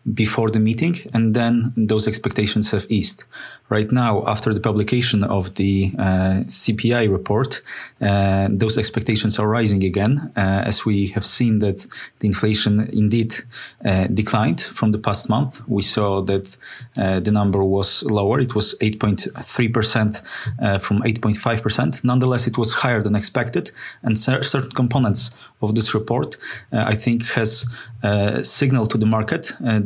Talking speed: 155 wpm